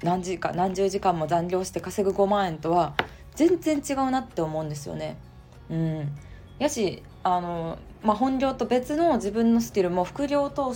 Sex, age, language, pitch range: female, 20-39, Japanese, 160-220 Hz